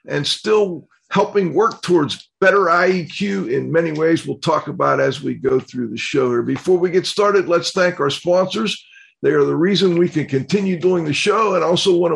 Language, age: English, 50-69